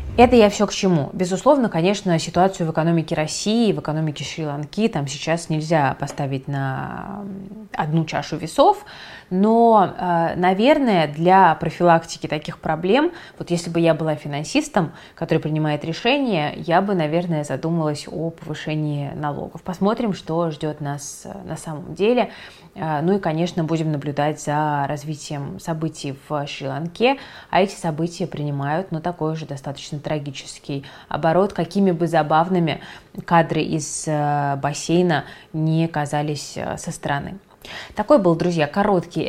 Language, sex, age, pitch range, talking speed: Russian, female, 20-39, 150-190 Hz, 130 wpm